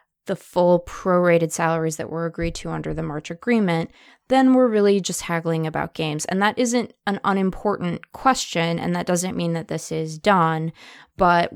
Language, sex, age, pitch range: English, female, 20-39, 160-185 Hz